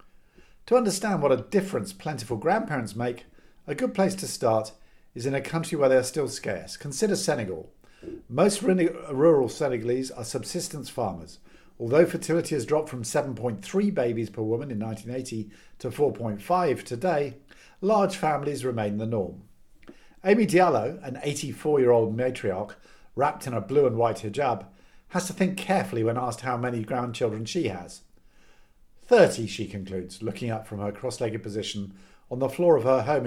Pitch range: 110-155 Hz